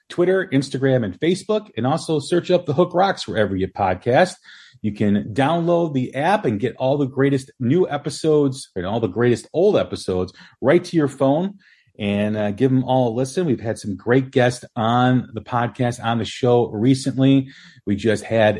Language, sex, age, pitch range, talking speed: English, male, 40-59, 110-145 Hz, 185 wpm